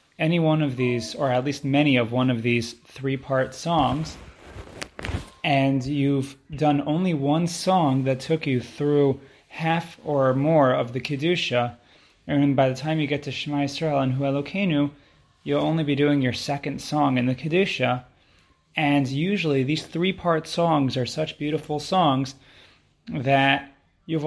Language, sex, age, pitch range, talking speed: English, male, 20-39, 120-150 Hz, 155 wpm